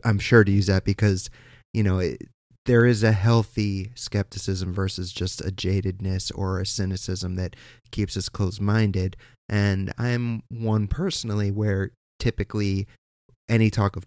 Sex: male